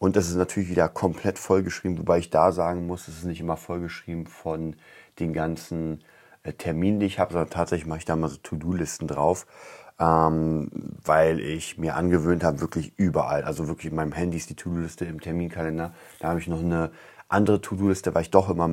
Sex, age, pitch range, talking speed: male, 30-49, 80-95 Hz, 200 wpm